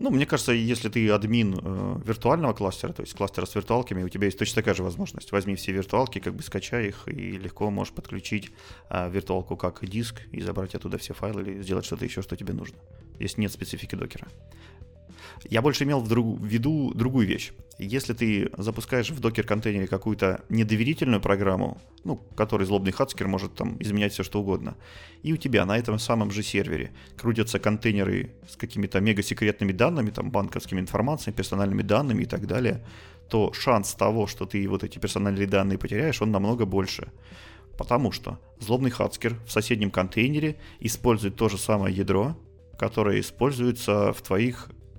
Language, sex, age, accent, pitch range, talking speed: Russian, male, 30-49, native, 100-115 Hz, 170 wpm